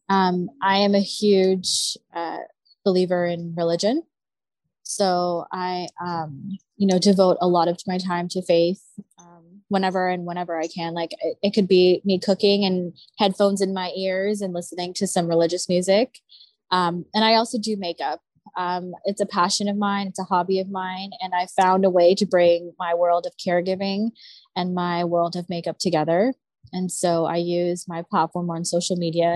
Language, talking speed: English, 180 wpm